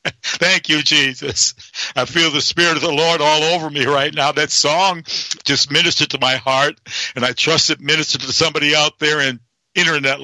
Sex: male